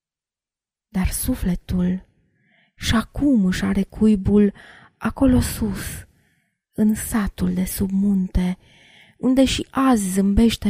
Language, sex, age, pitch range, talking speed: Romanian, female, 20-39, 180-215 Hz, 95 wpm